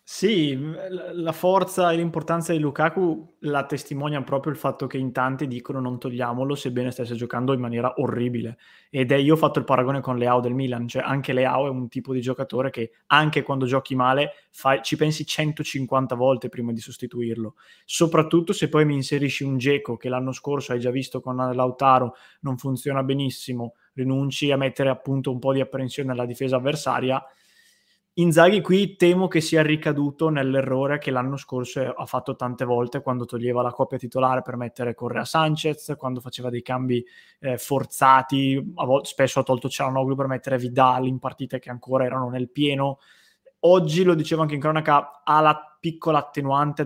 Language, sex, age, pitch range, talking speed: Italian, male, 20-39, 130-145 Hz, 175 wpm